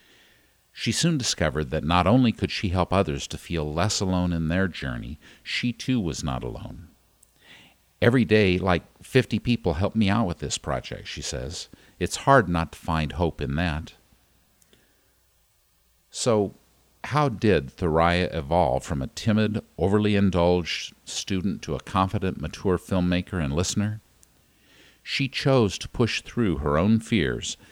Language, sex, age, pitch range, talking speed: English, male, 50-69, 80-105 Hz, 150 wpm